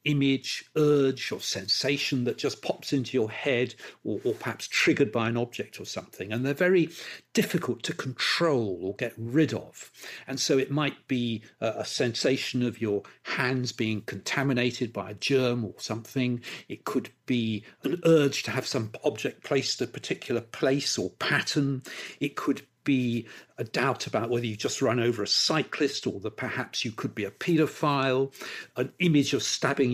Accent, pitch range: British, 115-145 Hz